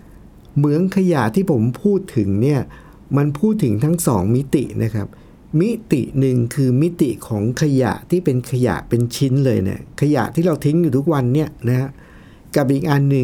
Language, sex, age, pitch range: Thai, male, 60-79, 115-160 Hz